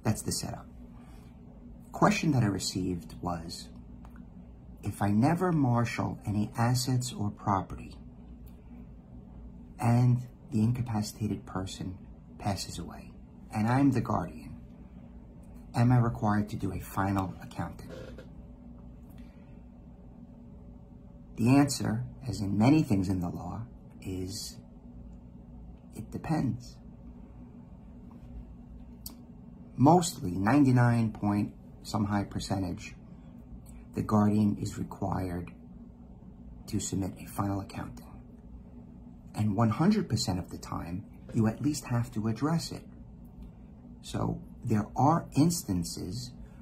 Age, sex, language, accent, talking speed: 50-69, male, English, American, 100 wpm